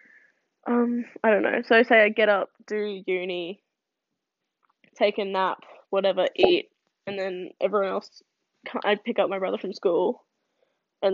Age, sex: 10-29, female